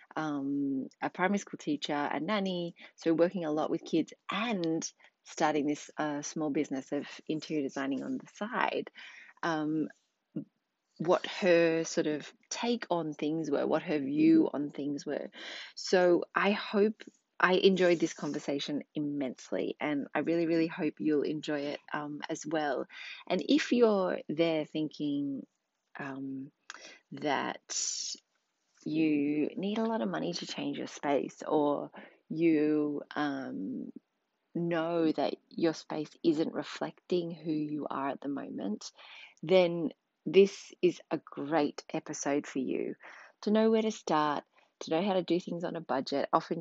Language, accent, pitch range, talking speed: English, Australian, 150-190 Hz, 145 wpm